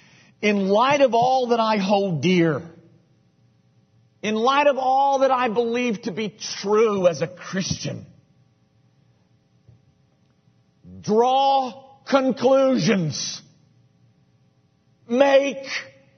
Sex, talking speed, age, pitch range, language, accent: male, 90 wpm, 50-69, 175-250 Hz, English, American